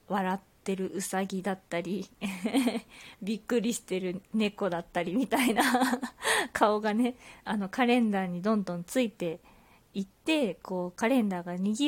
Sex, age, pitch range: female, 20-39, 180-240 Hz